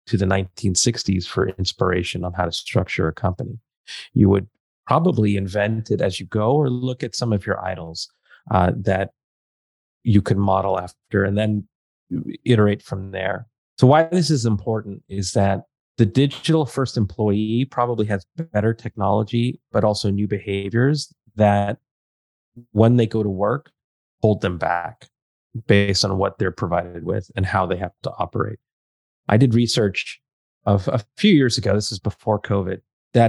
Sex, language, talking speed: male, English, 160 wpm